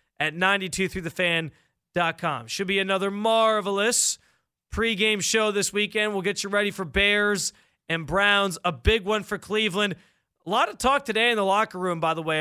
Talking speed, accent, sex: 170 wpm, American, male